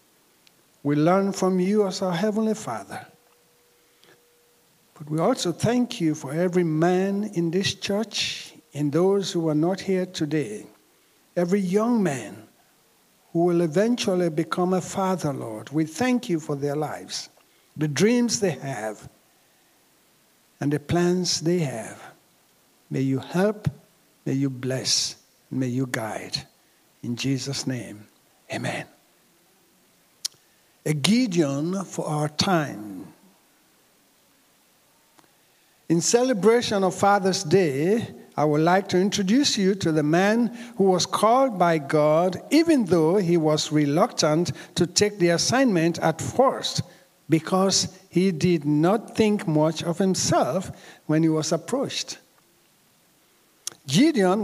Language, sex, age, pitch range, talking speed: English, male, 60-79, 155-200 Hz, 125 wpm